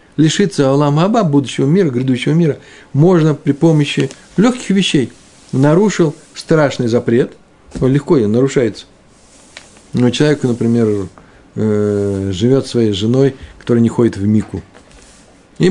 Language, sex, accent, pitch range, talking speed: Russian, male, native, 115-160 Hz, 120 wpm